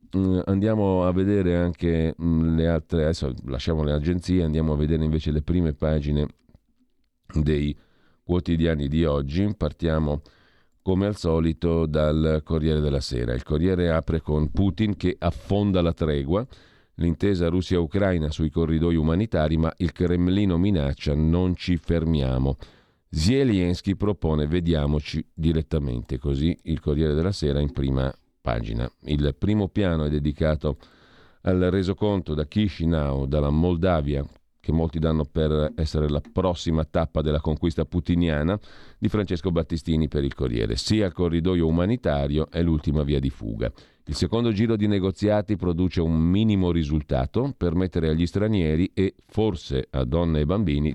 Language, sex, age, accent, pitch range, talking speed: Italian, male, 50-69, native, 75-90 Hz, 140 wpm